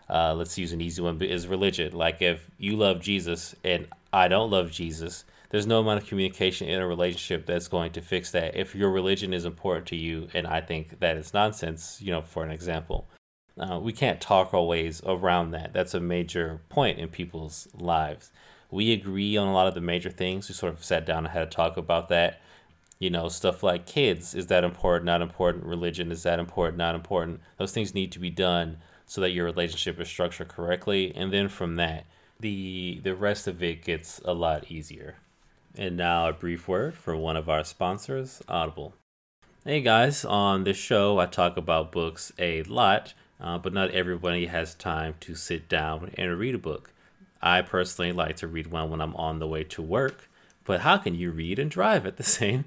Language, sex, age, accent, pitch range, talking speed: English, male, 30-49, American, 85-100 Hz, 210 wpm